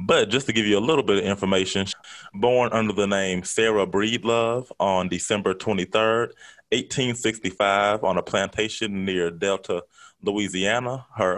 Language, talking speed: English, 155 wpm